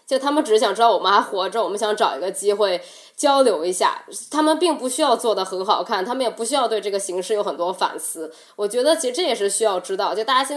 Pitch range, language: 195-270 Hz, Chinese